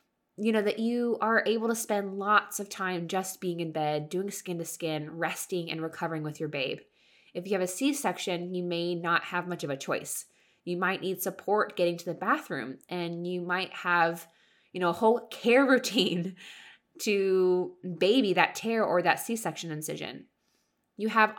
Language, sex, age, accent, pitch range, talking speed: English, female, 20-39, American, 160-210 Hz, 185 wpm